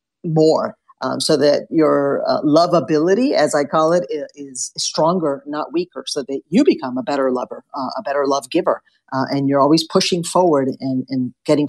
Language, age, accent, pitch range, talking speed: English, 50-69, American, 140-190 Hz, 185 wpm